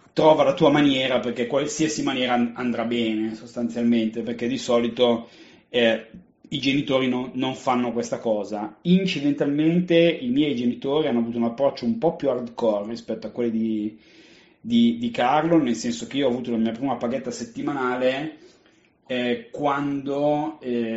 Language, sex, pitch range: Italian, male, 115-145 Hz